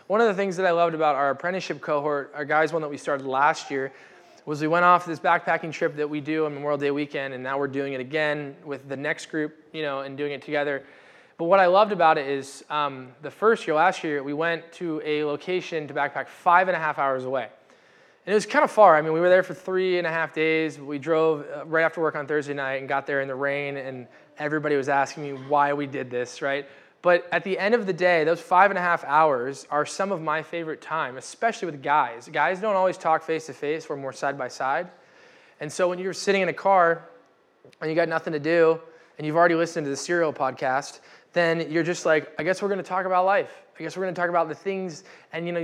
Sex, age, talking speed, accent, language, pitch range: male, 20-39, 250 wpm, American, English, 145-175 Hz